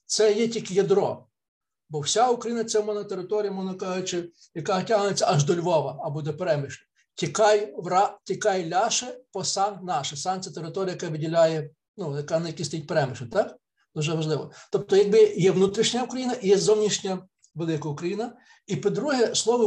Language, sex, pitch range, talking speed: Ukrainian, male, 160-210 Hz, 145 wpm